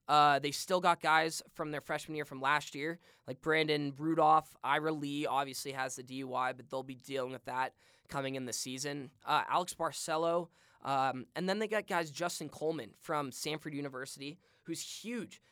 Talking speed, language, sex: 180 wpm, English, male